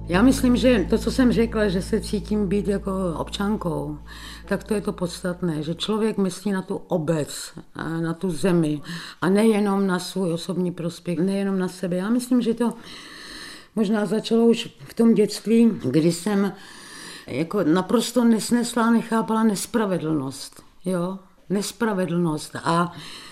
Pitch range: 175-220 Hz